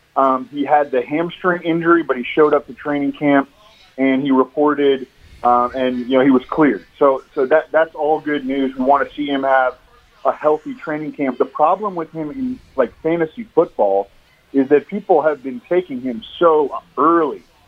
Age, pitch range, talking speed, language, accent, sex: 30-49, 135-165 Hz, 195 wpm, English, American, male